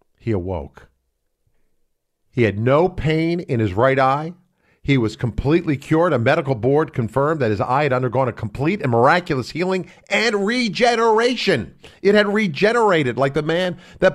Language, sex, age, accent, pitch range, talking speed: English, male, 50-69, American, 105-155 Hz, 155 wpm